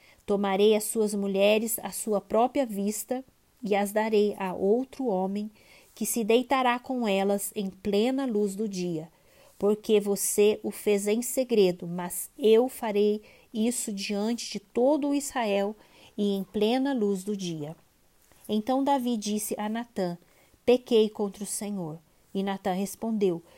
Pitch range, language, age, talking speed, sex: 200-240 Hz, Portuguese, 20-39, 145 wpm, female